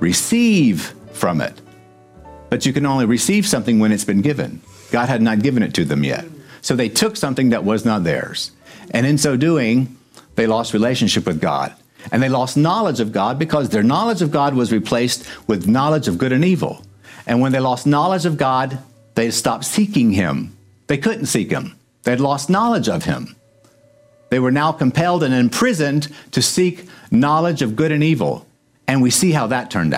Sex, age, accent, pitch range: male, 60-79, American, 115-155 Hz